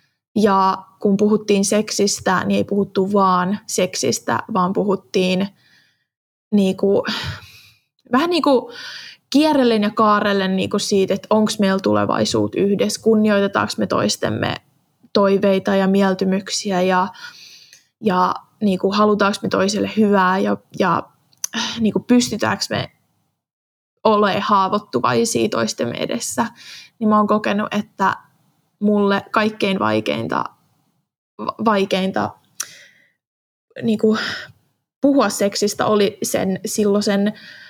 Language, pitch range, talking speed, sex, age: Finnish, 190-235 Hz, 100 wpm, female, 20-39